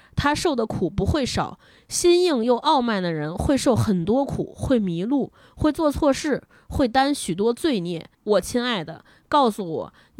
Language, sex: Chinese, female